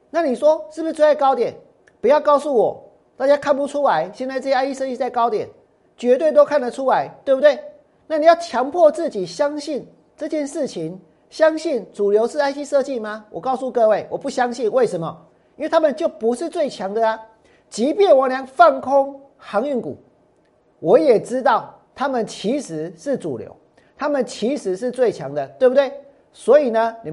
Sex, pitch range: male, 225-295 Hz